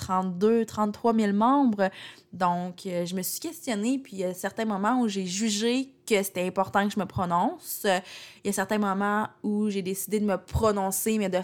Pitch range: 185-215 Hz